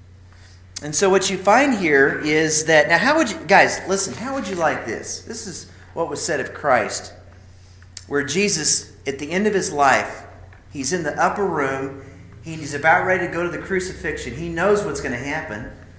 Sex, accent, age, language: male, American, 40-59, English